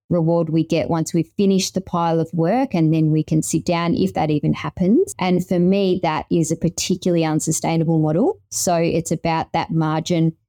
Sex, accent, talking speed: female, Australian, 195 wpm